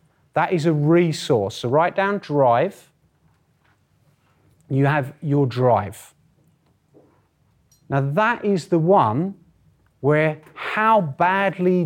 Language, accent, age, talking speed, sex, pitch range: English, British, 30-49, 100 wpm, male, 135-190 Hz